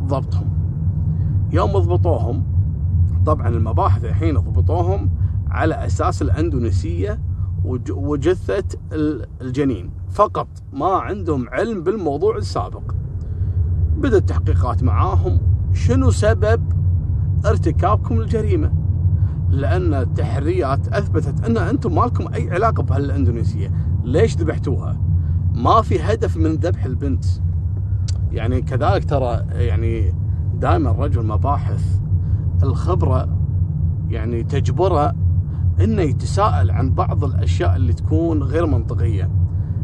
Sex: male